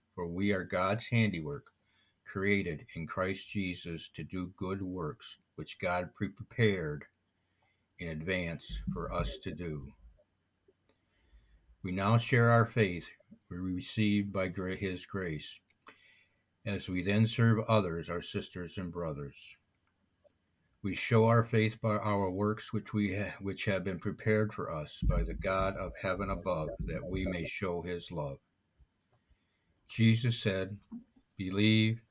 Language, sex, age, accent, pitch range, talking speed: English, male, 60-79, American, 90-105 Hz, 130 wpm